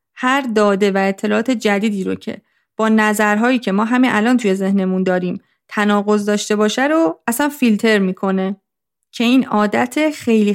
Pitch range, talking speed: 200-255 Hz, 155 wpm